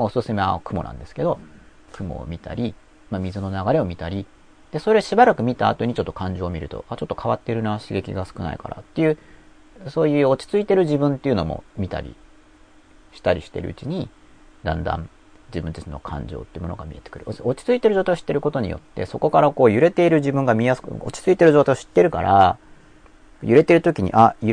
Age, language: 40-59, Japanese